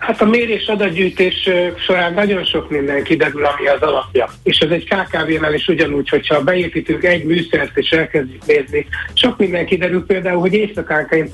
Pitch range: 145-180 Hz